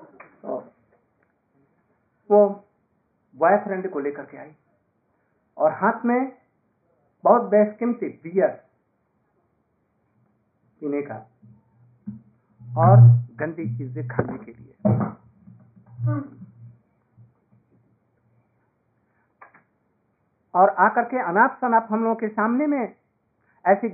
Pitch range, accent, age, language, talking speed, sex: 130-210 Hz, native, 60-79, Hindi, 80 wpm, male